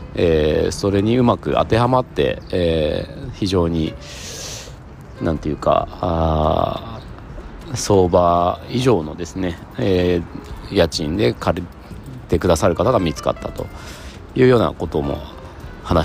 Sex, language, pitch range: male, Japanese, 85-120 Hz